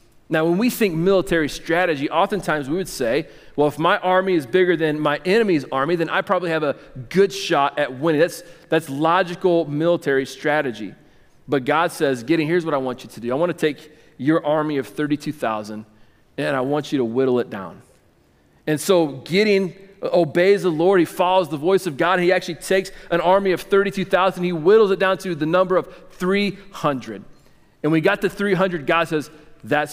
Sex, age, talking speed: male, 40-59, 195 wpm